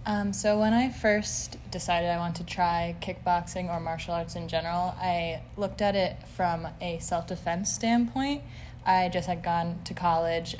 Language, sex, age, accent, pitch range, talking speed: English, female, 20-39, American, 150-175 Hz, 170 wpm